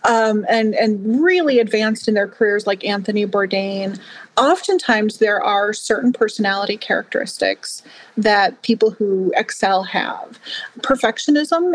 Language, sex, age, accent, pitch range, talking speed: English, female, 30-49, American, 200-245 Hz, 120 wpm